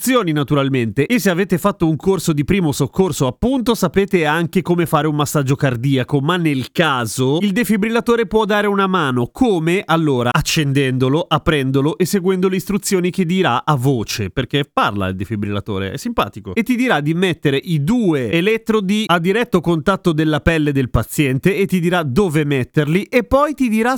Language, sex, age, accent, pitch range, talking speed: Italian, male, 30-49, native, 145-190 Hz, 175 wpm